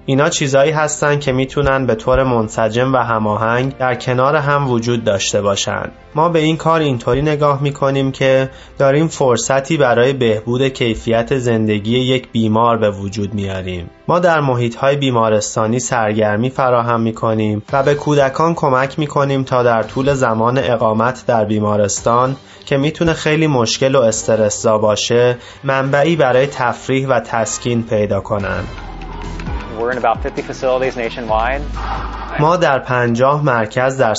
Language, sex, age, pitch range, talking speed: Persian, male, 20-39, 110-140 Hz, 130 wpm